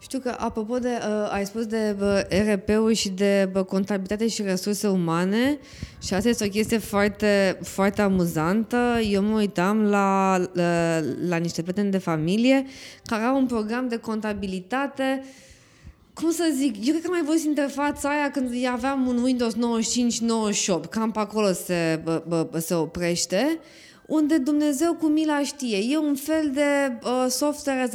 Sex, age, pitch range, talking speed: female, 20-39, 205-280 Hz, 165 wpm